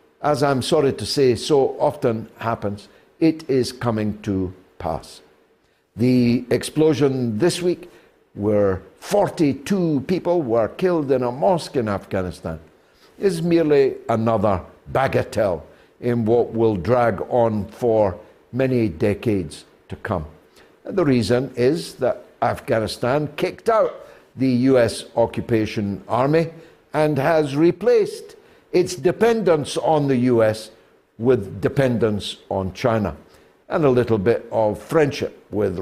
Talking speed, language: 120 wpm, English